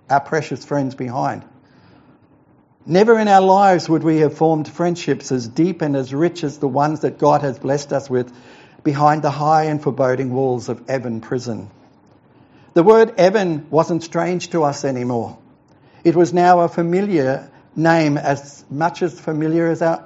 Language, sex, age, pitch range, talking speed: English, male, 60-79, 135-165 Hz, 170 wpm